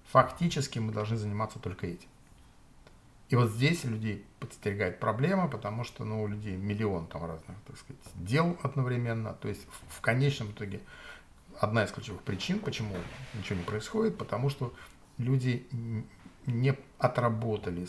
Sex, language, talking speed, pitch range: male, Russian, 135 wpm, 105-140 Hz